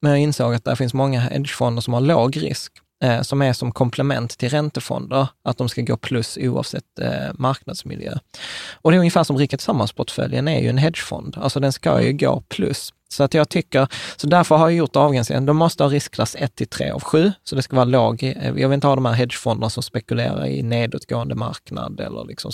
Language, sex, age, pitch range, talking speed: Swedish, male, 20-39, 120-140 Hz, 215 wpm